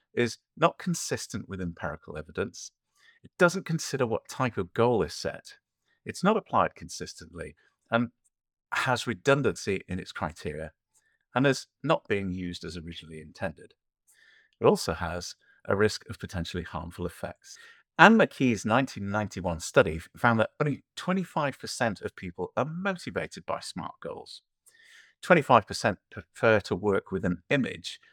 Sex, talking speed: male, 135 wpm